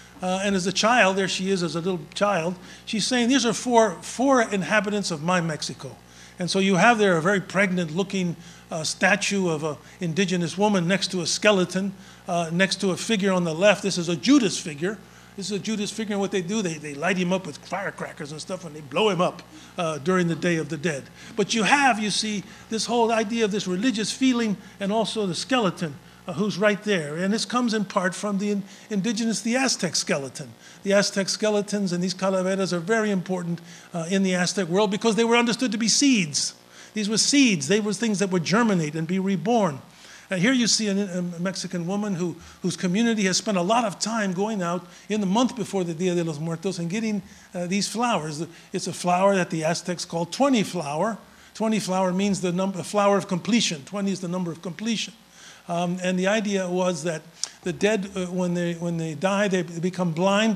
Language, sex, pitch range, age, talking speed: English, male, 175-210 Hz, 50-69, 220 wpm